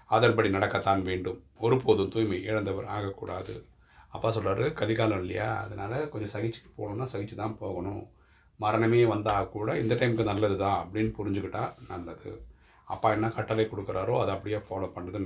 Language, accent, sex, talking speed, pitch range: Tamil, native, male, 140 wpm, 95-110 Hz